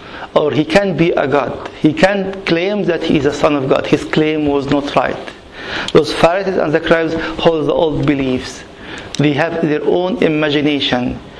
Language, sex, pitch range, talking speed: English, male, 140-165 Hz, 185 wpm